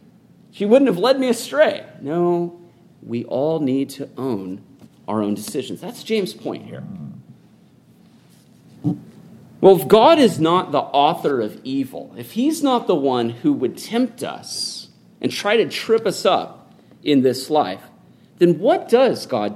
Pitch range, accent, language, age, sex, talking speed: 150-240 Hz, American, English, 40-59, male, 155 wpm